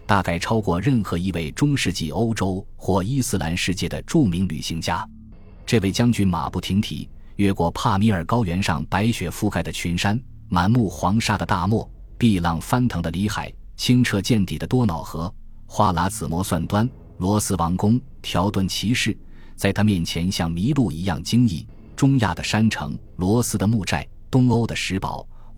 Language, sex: Chinese, male